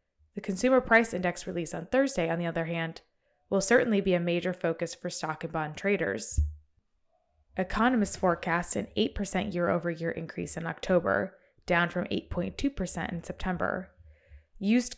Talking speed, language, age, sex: 150 wpm, English, 20-39, female